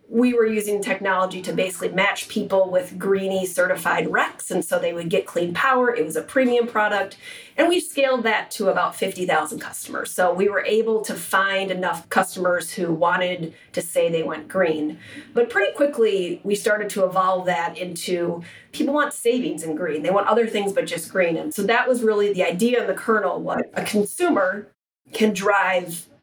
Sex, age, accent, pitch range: female, 30-49, American, 185-230 Hz